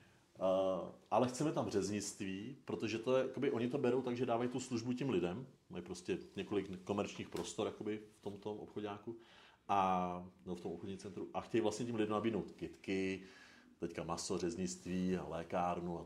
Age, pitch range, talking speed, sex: 40-59, 95-115 Hz, 170 wpm, male